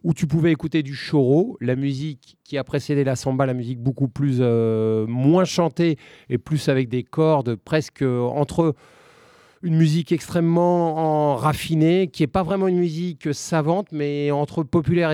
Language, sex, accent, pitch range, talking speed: French, male, French, 130-165 Hz, 165 wpm